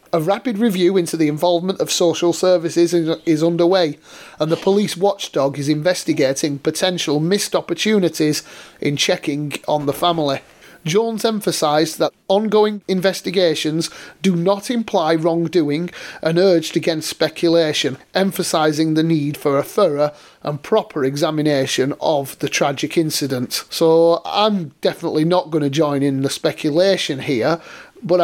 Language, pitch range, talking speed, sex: English, 155-190 Hz, 135 wpm, male